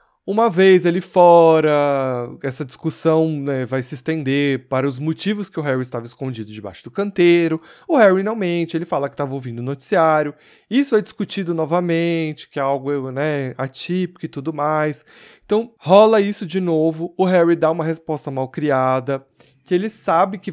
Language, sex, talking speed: Portuguese, male, 175 wpm